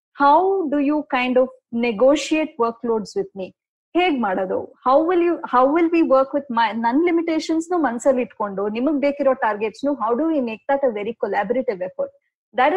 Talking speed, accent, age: 185 wpm, native, 20-39